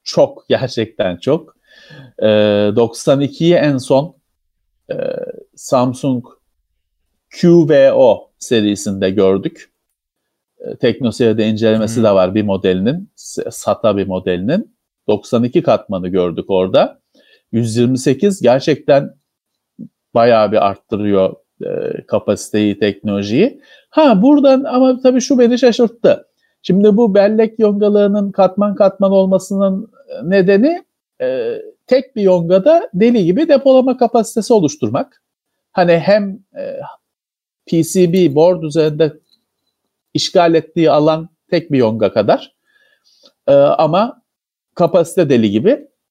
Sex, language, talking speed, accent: male, Turkish, 100 wpm, native